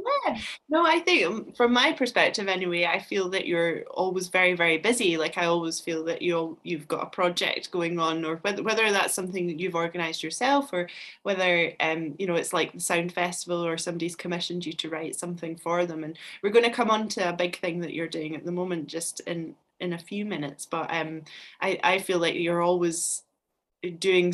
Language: English